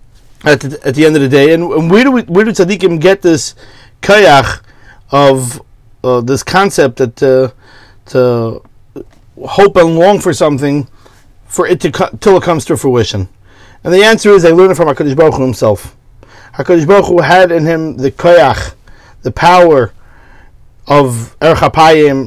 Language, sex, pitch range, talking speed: English, male, 130-180 Hz, 160 wpm